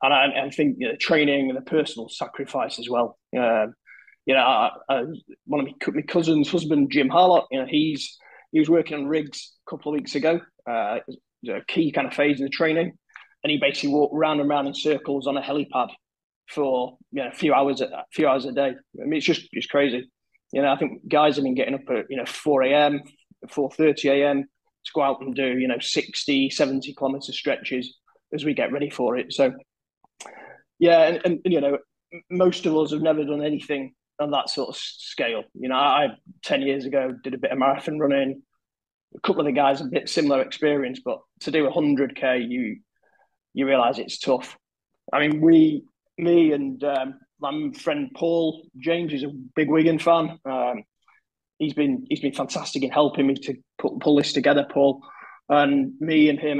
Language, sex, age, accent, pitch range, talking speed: English, male, 20-39, British, 135-155 Hz, 210 wpm